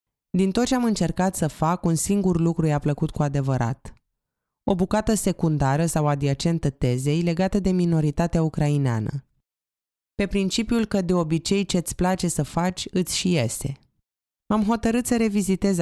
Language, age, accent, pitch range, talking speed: Romanian, 20-39, native, 145-180 Hz, 150 wpm